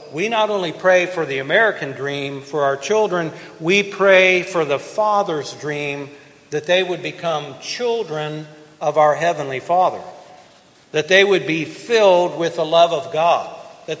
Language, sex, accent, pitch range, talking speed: English, male, American, 155-185 Hz, 160 wpm